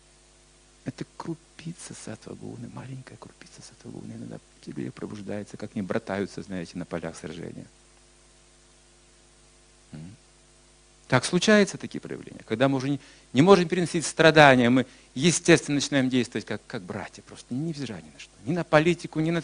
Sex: male